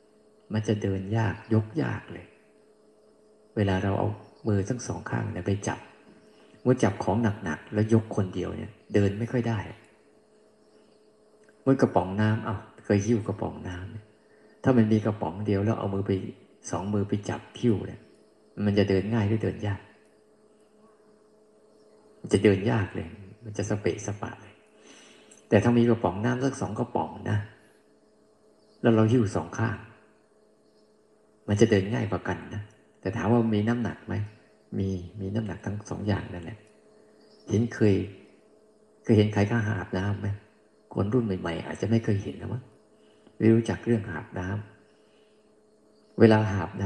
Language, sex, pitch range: Thai, male, 100-115 Hz